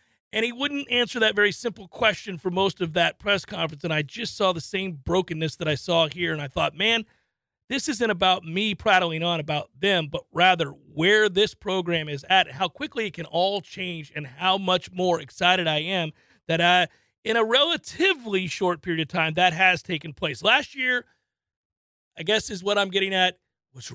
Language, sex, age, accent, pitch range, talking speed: English, male, 40-59, American, 165-200 Hz, 200 wpm